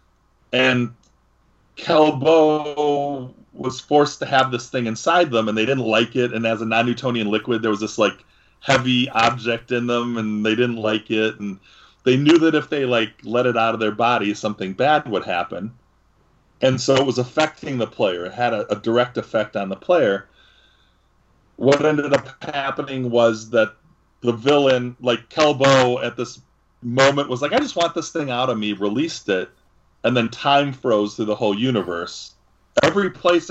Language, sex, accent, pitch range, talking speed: English, male, American, 110-140 Hz, 180 wpm